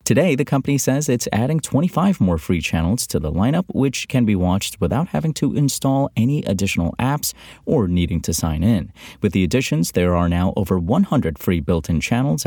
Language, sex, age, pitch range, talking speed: English, male, 30-49, 90-135 Hz, 190 wpm